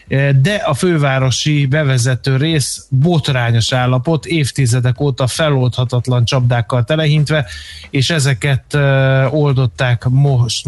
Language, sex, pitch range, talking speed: Hungarian, male, 125-140 Hz, 90 wpm